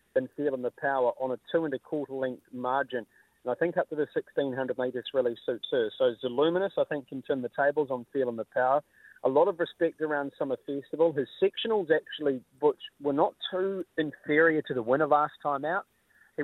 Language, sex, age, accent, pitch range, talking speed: English, male, 40-59, Australian, 125-160 Hz, 210 wpm